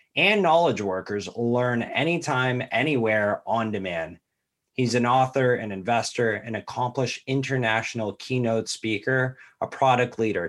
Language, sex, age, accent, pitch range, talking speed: English, male, 30-49, American, 110-135 Hz, 120 wpm